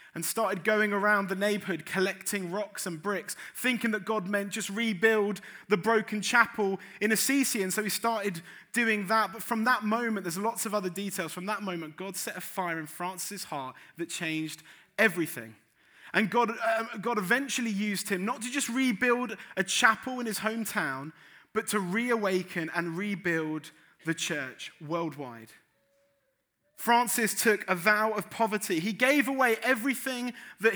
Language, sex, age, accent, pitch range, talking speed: English, male, 30-49, British, 190-235 Hz, 165 wpm